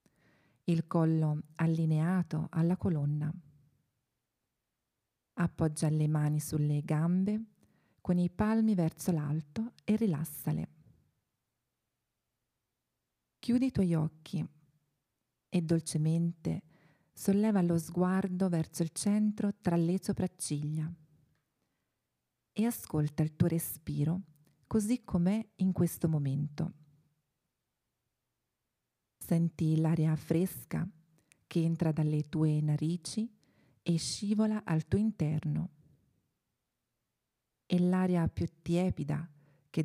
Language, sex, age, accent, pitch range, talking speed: Italian, female, 40-59, native, 150-175 Hz, 90 wpm